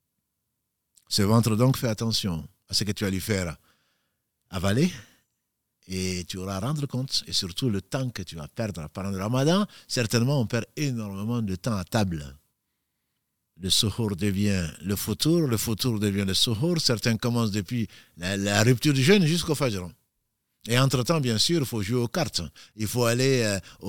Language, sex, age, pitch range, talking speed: French, male, 50-69, 100-130 Hz, 180 wpm